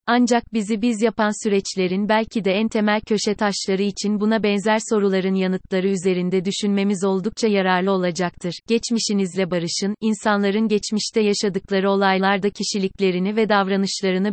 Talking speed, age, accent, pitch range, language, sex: 125 wpm, 30-49, native, 190-220 Hz, Turkish, female